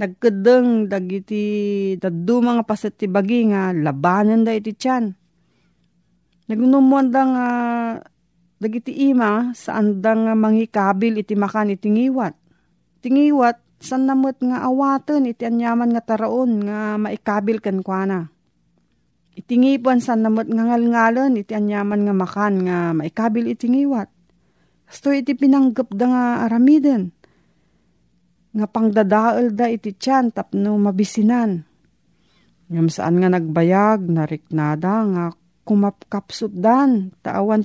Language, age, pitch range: Filipino, 40-59, 185-235 Hz